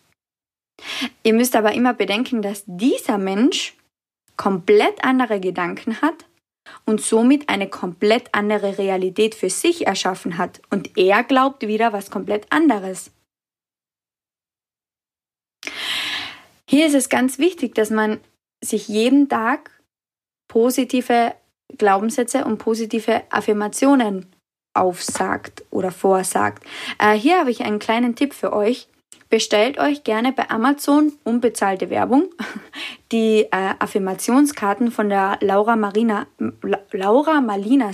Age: 20-39